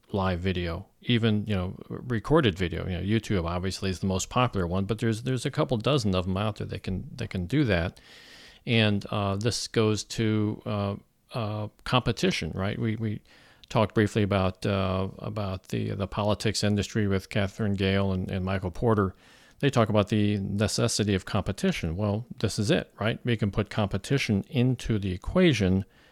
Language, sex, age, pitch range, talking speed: English, male, 50-69, 100-115 Hz, 180 wpm